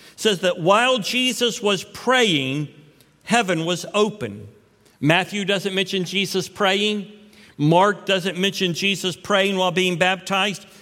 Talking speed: 120 wpm